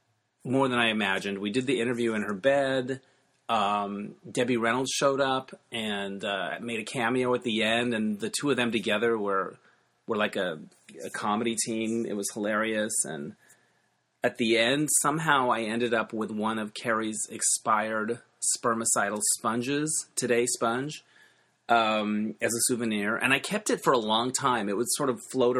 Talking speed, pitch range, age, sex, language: 175 wpm, 105-125 Hz, 30-49, male, English